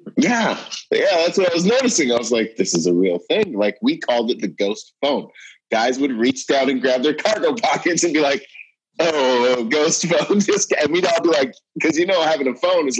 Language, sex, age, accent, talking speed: English, male, 30-49, American, 225 wpm